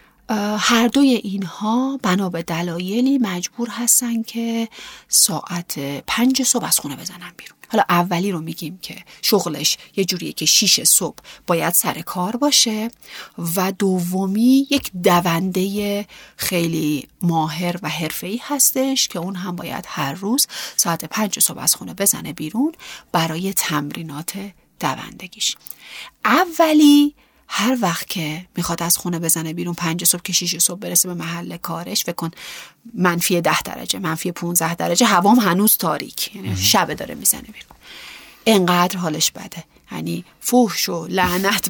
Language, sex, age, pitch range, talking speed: Persian, female, 40-59, 170-225 Hz, 135 wpm